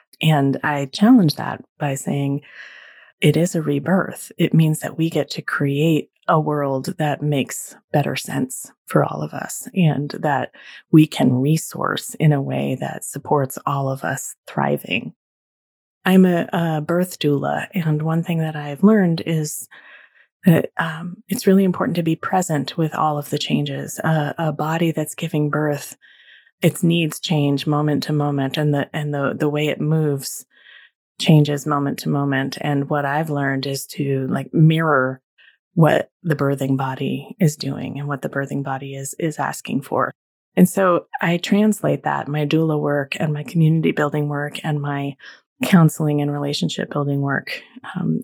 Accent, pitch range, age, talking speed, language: American, 140-165 Hz, 30-49, 165 wpm, English